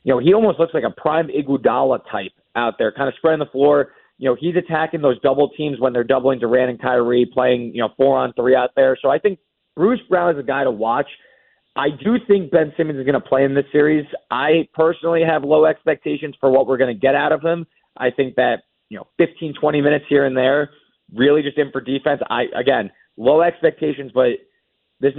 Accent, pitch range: American, 135-165 Hz